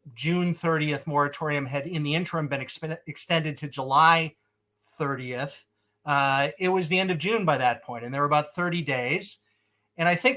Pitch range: 140-165 Hz